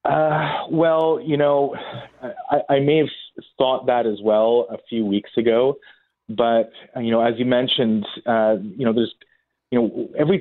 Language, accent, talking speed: English, American, 165 wpm